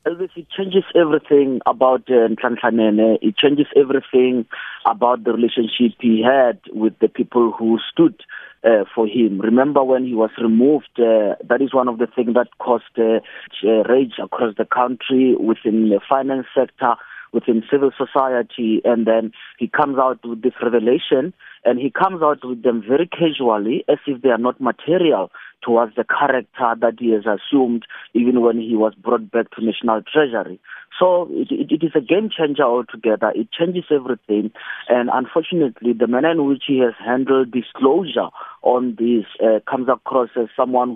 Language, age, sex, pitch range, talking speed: English, 30-49, male, 115-135 Hz, 165 wpm